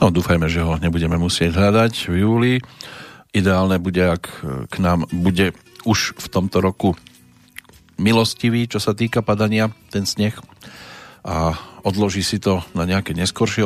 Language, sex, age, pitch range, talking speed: Slovak, male, 40-59, 90-115 Hz, 145 wpm